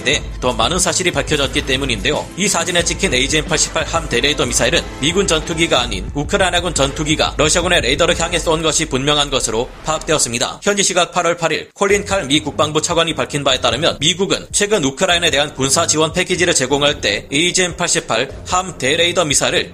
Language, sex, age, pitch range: Korean, male, 30-49, 140-175 Hz